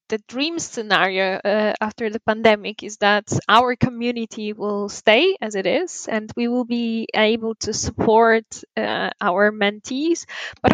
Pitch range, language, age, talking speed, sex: 220-255 Hz, English, 10-29, 150 wpm, female